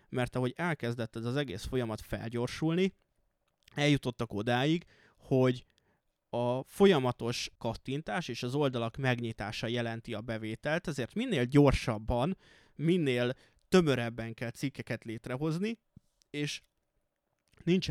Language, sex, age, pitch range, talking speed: Hungarian, male, 20-39, 115-140 Hz, 105 wpm